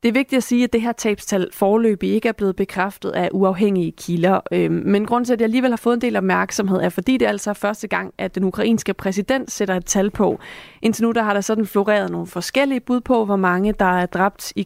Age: 30-49